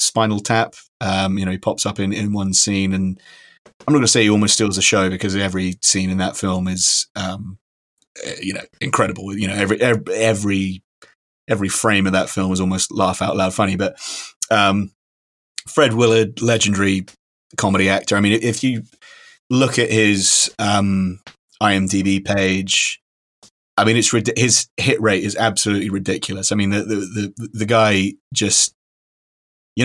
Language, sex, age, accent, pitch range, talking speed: English, male, 30-49, British, 95-115 Hz, 170 wpm